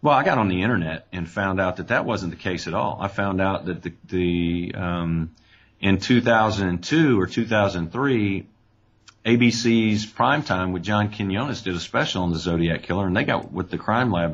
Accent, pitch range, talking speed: American, 90-110 Hz, 195 wpm